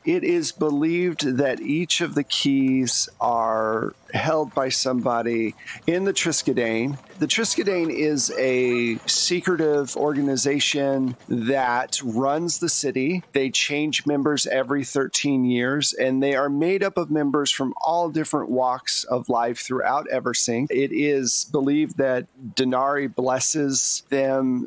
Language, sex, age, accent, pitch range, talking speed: English, male, 40-59, American, 125-150 Hz, 130 wpm